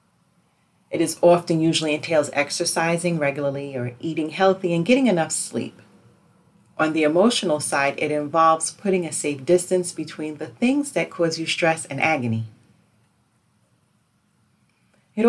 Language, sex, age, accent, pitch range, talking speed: English, female, 40-59, American, 145-200 Hz, 135 wpm